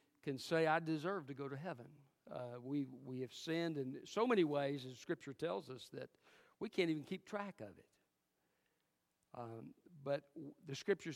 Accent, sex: American, male